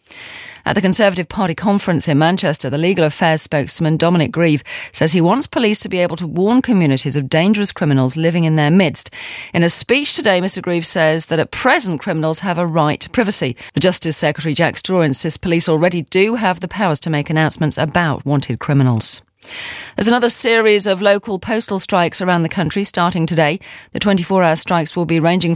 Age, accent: 40-59, British